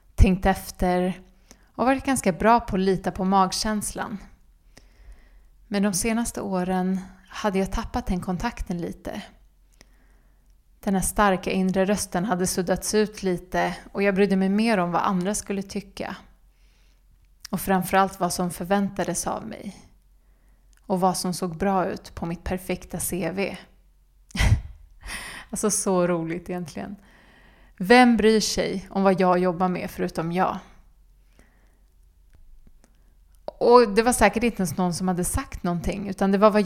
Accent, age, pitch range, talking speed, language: native, 30-49, 180-200 Hz, 140 wpm, Swedish